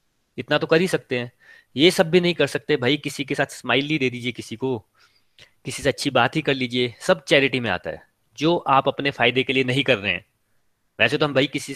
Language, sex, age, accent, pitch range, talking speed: Hindi, male, 30-49, native, 120-155 Hz, 245 wpm